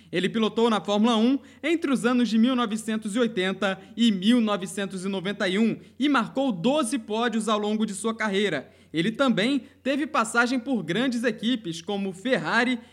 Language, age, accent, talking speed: Portuguese, 20-39, Brazilian, 140 wpm